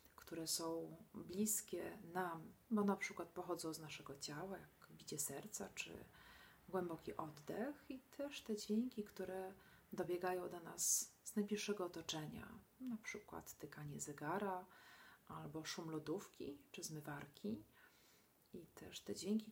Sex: female